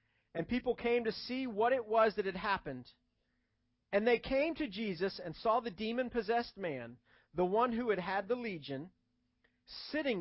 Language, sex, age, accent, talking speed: English, male, 40-59, American, 170 wpm